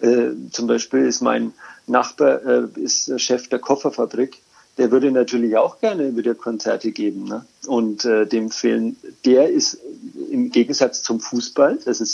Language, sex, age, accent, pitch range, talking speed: German, male, 50-69, German, 115-150 Hz, 160 wpm